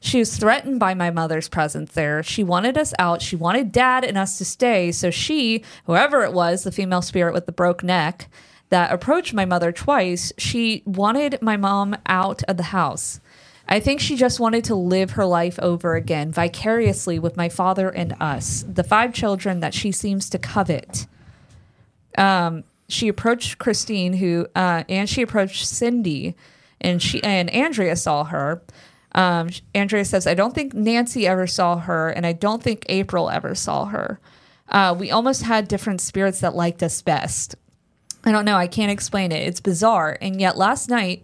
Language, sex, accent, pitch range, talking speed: English, female, American, 170-210 Hz, 185 wpm